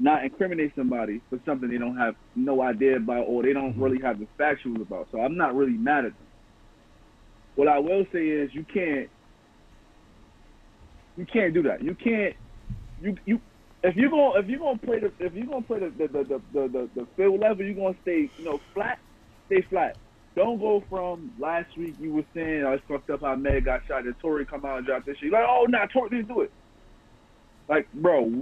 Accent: American